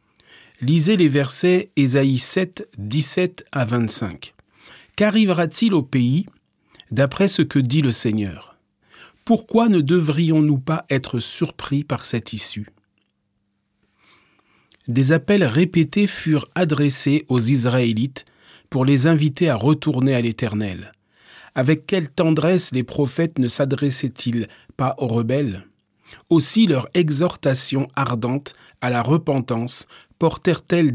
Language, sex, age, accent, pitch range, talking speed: French, male, 40-59, French, 120-170 Hz, 110 wpm